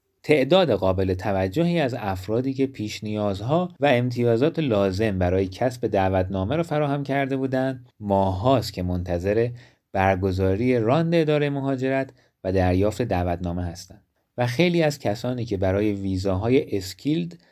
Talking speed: 125 wpm